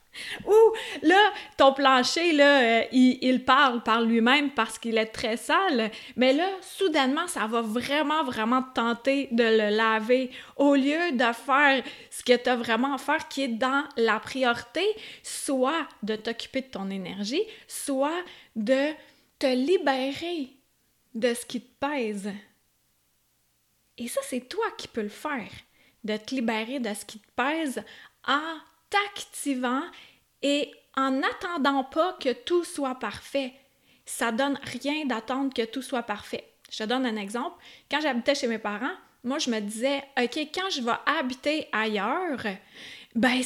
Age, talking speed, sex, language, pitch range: 30-49, 155 wpm, female, French, 235-295 Hz